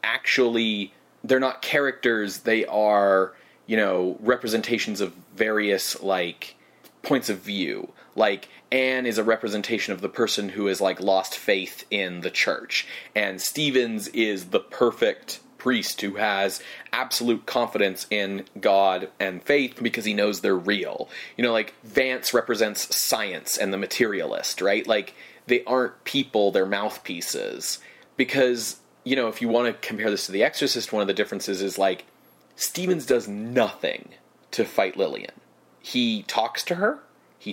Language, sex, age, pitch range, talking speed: English, male, 30-49, 100-135 Hz, 150 wpm